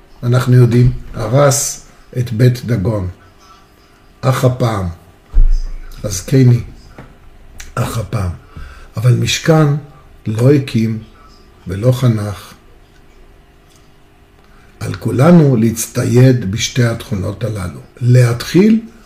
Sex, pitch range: male, 105-130 Hz